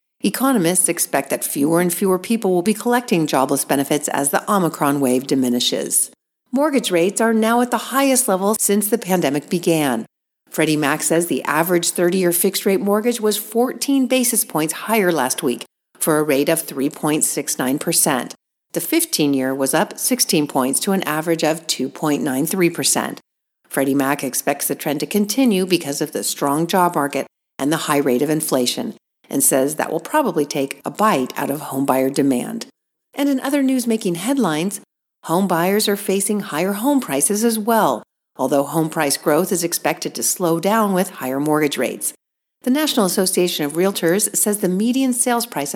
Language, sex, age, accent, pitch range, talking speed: English, female, 50-69, American, 150-215 Hz, 170 wpm